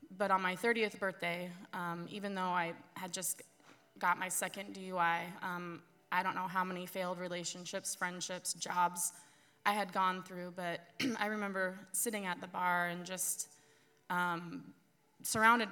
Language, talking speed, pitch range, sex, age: English, 155 wpm, 175-190 Hz, female, 20-39